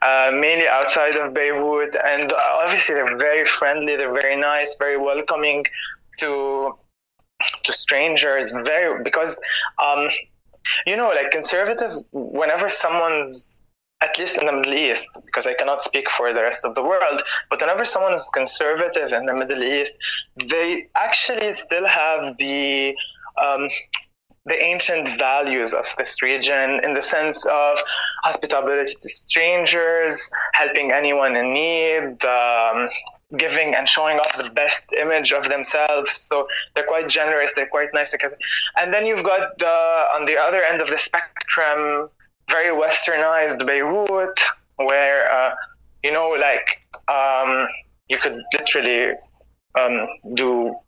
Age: 20-39